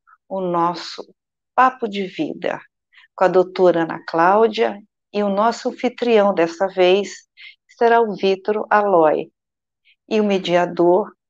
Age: 50-69